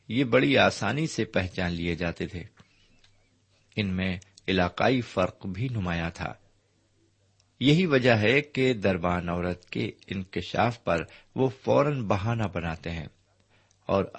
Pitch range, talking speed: 95-120 Hz, 125 wpm